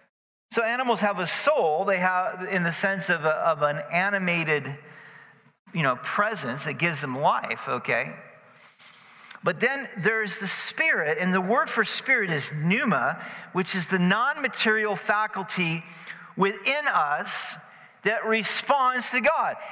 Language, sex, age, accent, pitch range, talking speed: English, male, 50-69, American, 145-225 Hz, 135 wpm